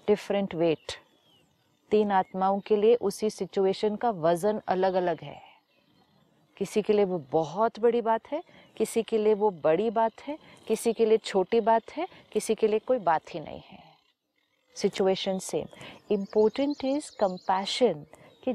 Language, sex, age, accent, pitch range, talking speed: Hindi, female, 40-59, native, 190-235 Hz, 155 wpm